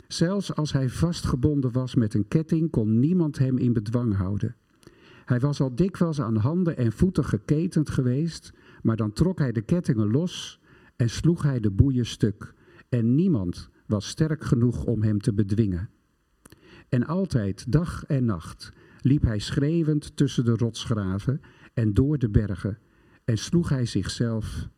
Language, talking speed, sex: Dutch, 155 wpm, male